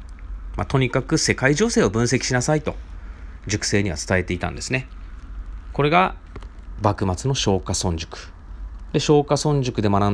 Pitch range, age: 80-120 Hz, 30-49